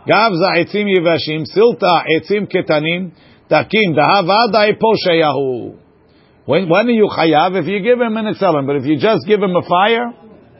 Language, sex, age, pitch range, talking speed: English, male, 50-69, 160-215 Hz, 160 wpm